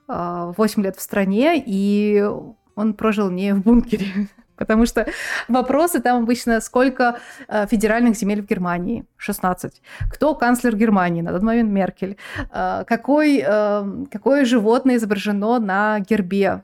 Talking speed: 125 wpm